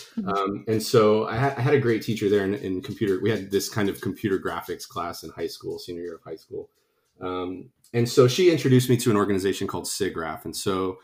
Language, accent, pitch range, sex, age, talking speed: English, American, 90-115 Hz, male, 30-49, 230 wpm